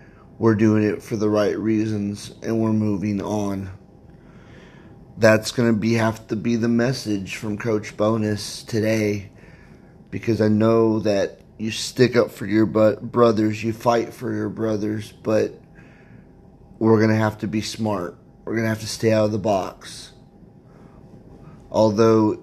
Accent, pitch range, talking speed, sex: American, 105-115 Hz, 160 wpm, male